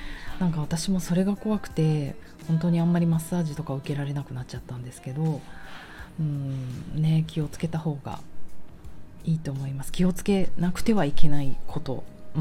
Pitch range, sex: 140-185 Hz, female